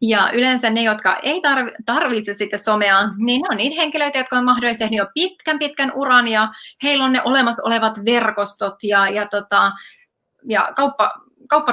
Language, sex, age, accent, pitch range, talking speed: Finnish, female, 30-49, native, 205-250 Hz, 170 wpm